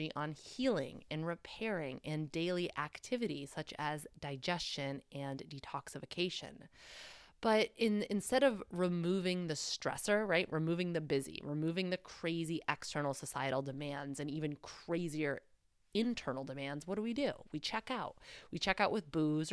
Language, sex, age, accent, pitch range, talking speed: English, female, 20-39, American, 145-185 Hz, 140 wpm